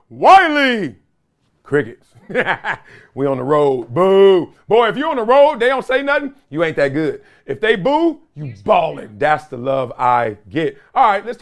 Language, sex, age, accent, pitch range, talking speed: English, male, 40-59, American, 140-225 Hz, 180 wpm